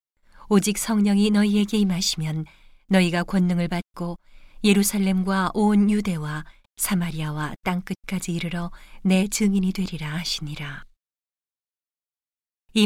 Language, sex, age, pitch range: Korean, female, 40-59, 165-205 Hz